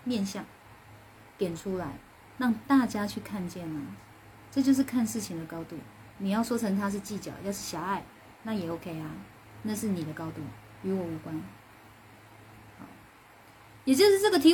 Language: Chinese